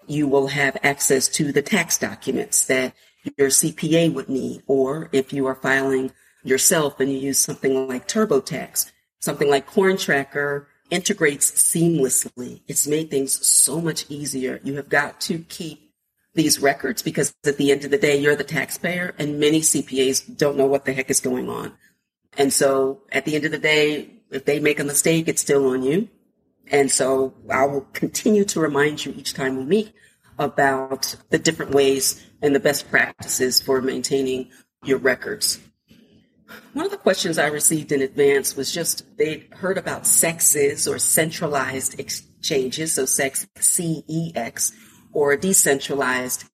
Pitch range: 135-160 Hz